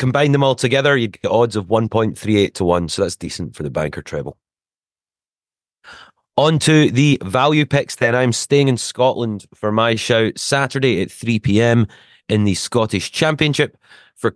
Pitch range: 90-120 Hz